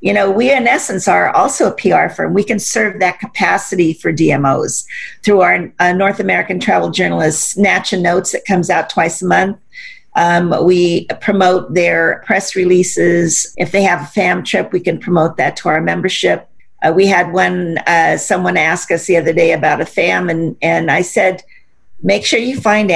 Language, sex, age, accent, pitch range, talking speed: English, female, 50-69, American, 165-215 Hz, 195 wpm